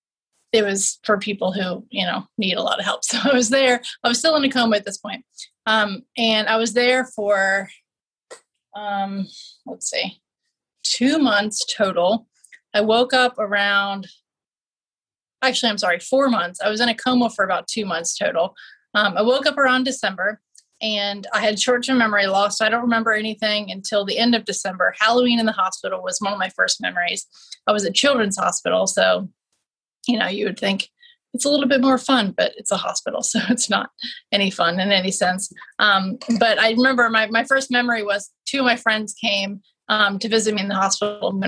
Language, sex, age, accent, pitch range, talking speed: English, female, 30-49, American, 200-245 Hz, 200 wpm